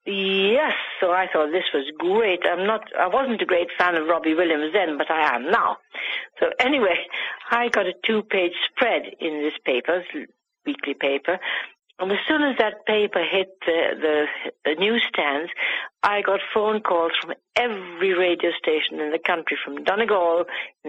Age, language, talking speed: 60-79, English, 170 wpm